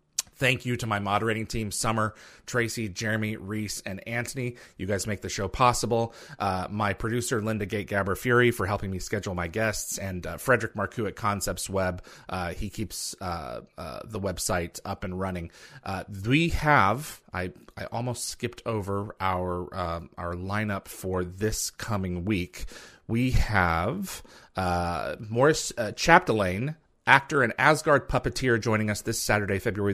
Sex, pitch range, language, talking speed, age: male, 95-120 Hz, English, 155 wpm, 30-49